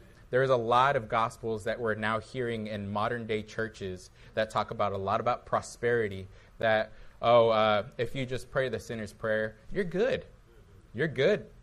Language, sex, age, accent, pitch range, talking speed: English, male, 20-39, American, 105-130 Hz, 170 wpm